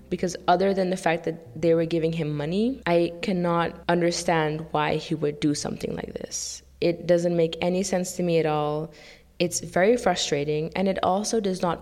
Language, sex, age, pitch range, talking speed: English, female, 20-39, 155-190 Hz, 195 wpm